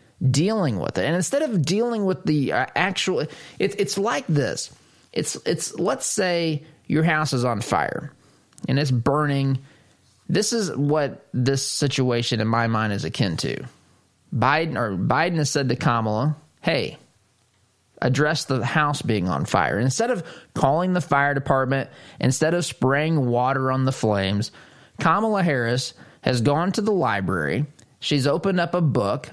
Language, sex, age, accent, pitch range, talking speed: English, male, 20-39, American, 125-170 Hz, 160 wpm